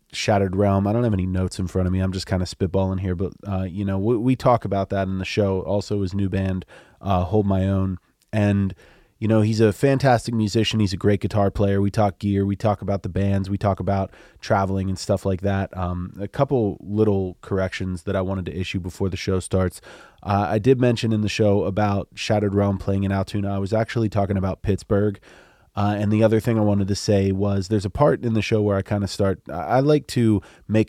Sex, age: male, 30-49